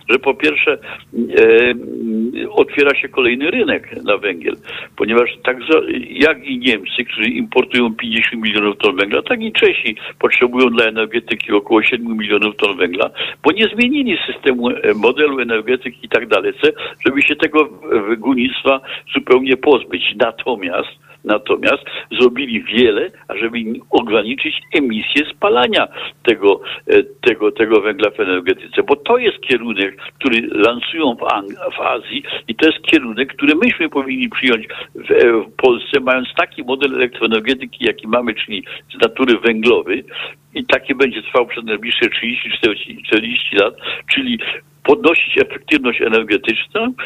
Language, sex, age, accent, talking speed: Polish, male, 60-79, native, 130 wpm